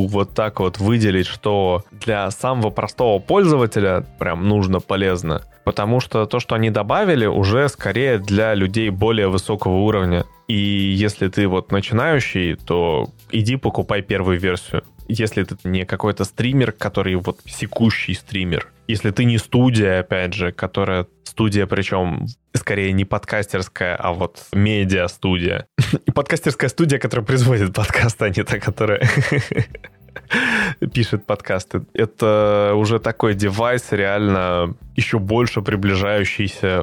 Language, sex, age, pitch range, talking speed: Russian, male, 20-39, 95-115 Hz, 130 wpm